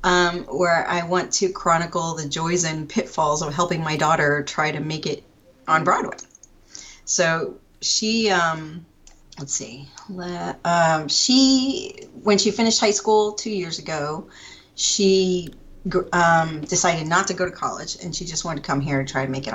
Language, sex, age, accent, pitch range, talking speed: English, female, 40-59, American, 145-195 Hz, 170 wpm